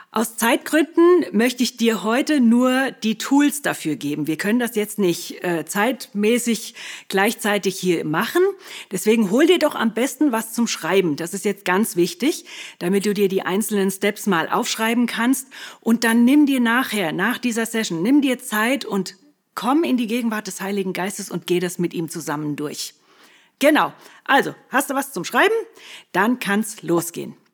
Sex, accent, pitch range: female, German, 180-245 Hz